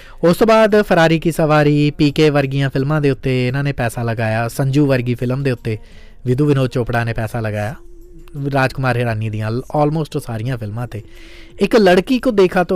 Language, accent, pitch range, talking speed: English, Indian, 120-170 Hz, 145 wpm